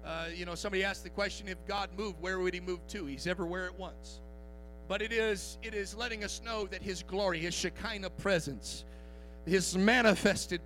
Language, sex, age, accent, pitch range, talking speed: English, male, 40-59, American, 185-255 Hz, 195 wpm